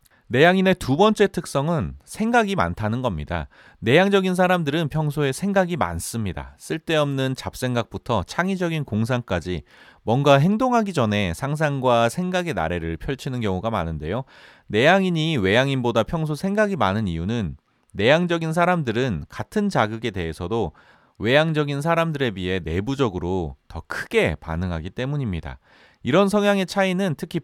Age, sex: 30-49, male